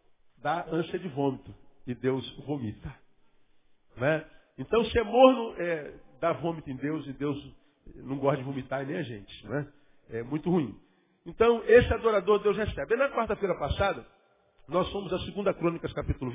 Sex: male